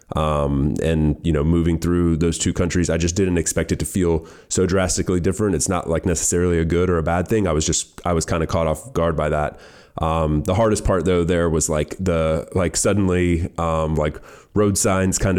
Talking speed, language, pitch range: 220 wpm, English, 80-95 Hz